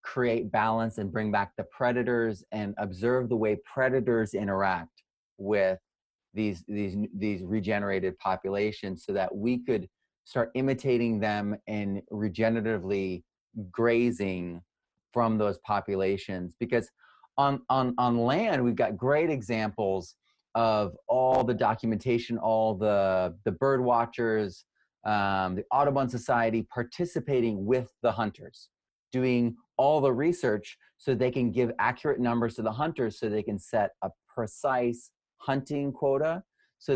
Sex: male